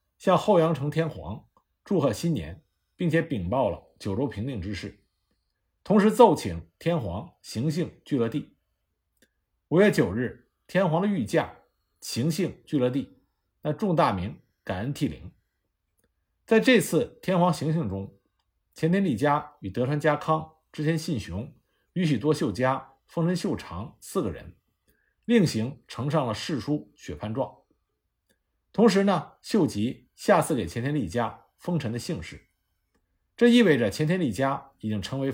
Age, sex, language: 50-69, male, Chinese